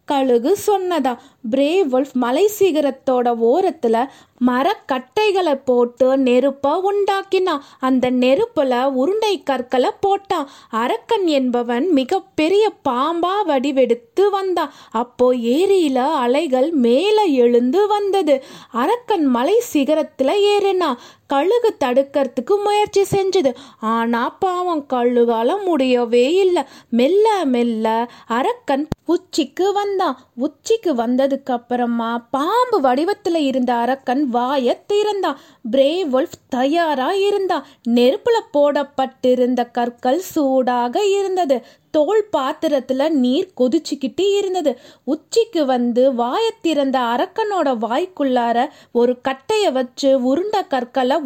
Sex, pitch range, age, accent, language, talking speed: female, 255-380 Hz, 20-39, native, Tamil, 75 wpm